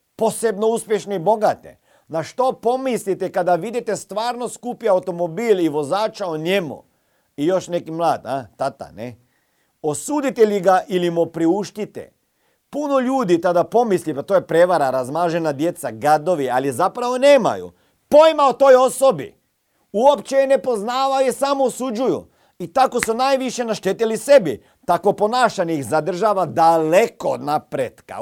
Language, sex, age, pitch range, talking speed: Croatian, male, 50-69, 165-240 Hz, 140 wpm